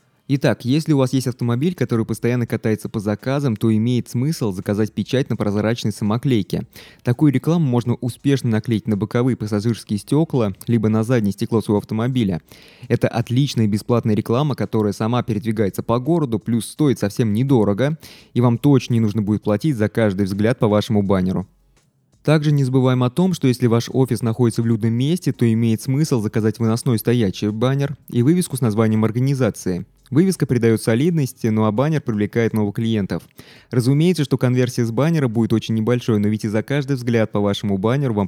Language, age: Russian, 20-39